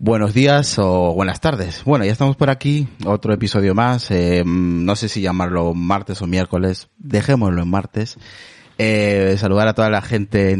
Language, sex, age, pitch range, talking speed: Spanish, male, 30-49, 85-110 Hz, 175 wpm